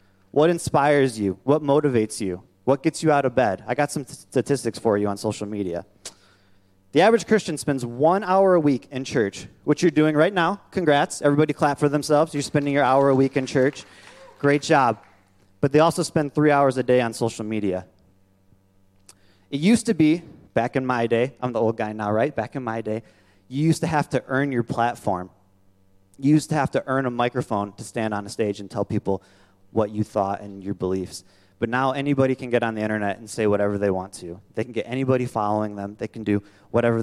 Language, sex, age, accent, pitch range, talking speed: English, male, 30-49, American, 95-140 Hz, 215 wpm